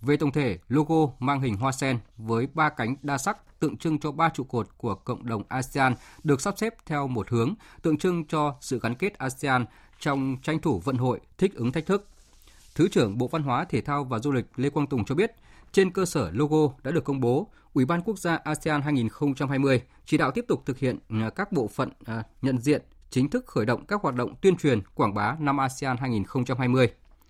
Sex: male